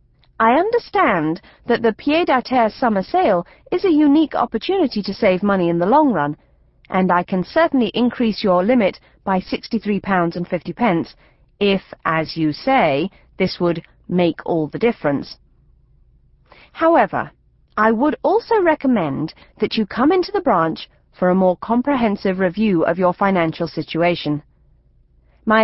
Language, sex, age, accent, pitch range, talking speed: English, female, 40-59, British, 155-230 Hz, 145 wpm